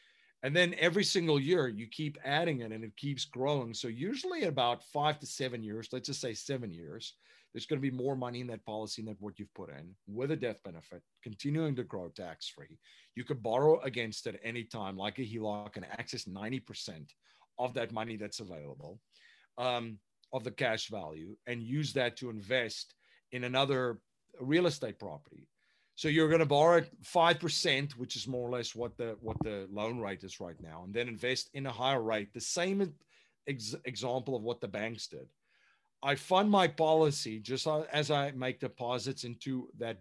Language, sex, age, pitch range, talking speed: English, male, 40-59, 115-145 Hz, 190 wpm